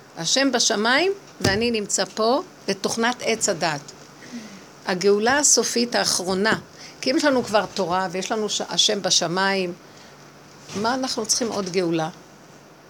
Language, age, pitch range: Hebrew, 50-69, 190-250 Hz